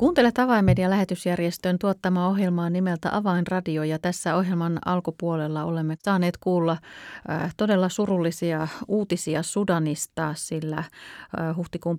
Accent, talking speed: native, 95 wpm